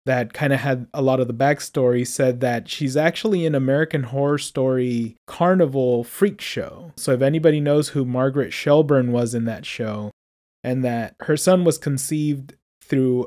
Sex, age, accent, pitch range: male, 20-39, American, 125-155 Hz